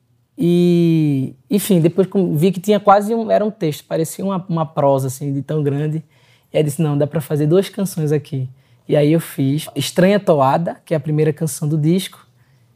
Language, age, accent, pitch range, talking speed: Portuguese, 20-39, Brazilian, 150-185 Hz, 200 wpm